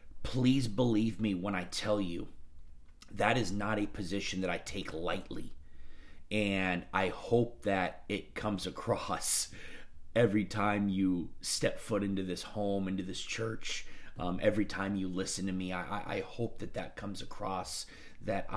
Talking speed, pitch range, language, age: 160 wpm, 85-105 Hz, English, 30-49